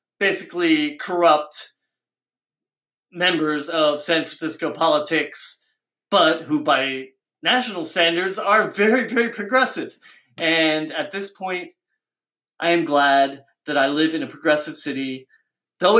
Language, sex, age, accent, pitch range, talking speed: English, male, 30-49, American, 155-200 Hz, 115 wpm